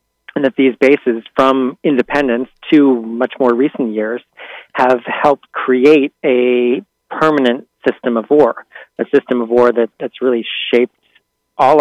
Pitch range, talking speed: 120-140 Hz, 140 wpm